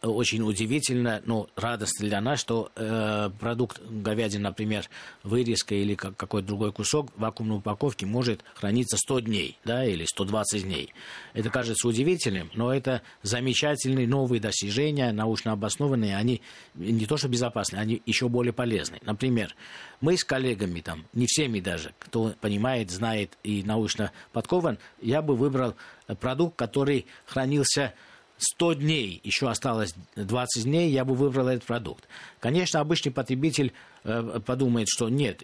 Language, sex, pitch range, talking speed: Russian, male, 105-130 Hz, 140 wpm